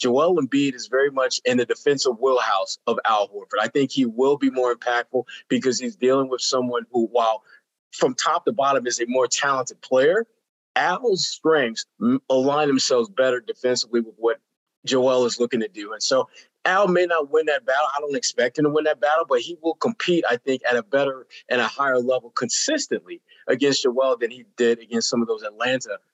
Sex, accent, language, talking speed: male, American, English, 200 wpm